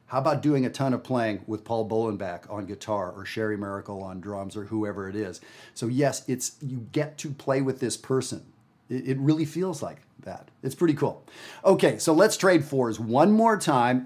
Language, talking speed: English, 200 wpm